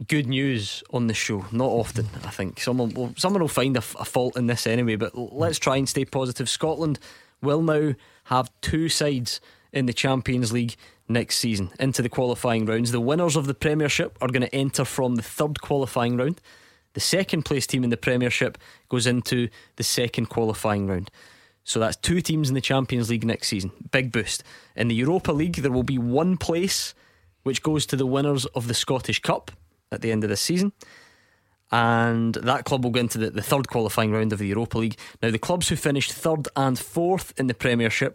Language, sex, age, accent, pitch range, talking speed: English, male, 20-39, British, 115-140 Hz, 205 wpm